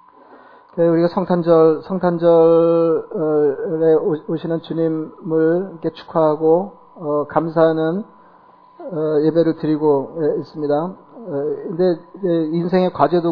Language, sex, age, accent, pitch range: Korean, male, 40-59, native, 155-175 Hz